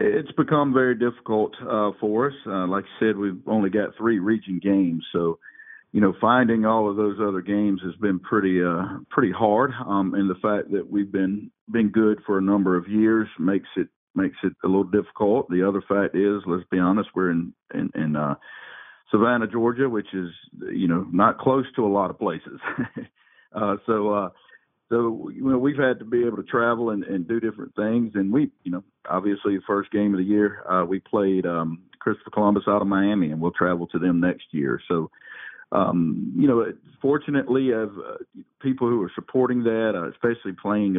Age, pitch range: 50-69, 95-115 Hz